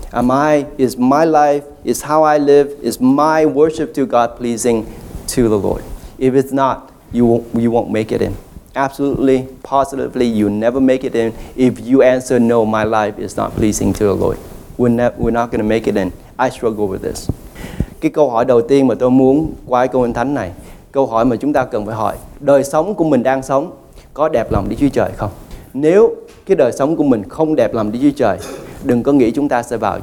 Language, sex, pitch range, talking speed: English, male, 110-140 Hz, 135 wpm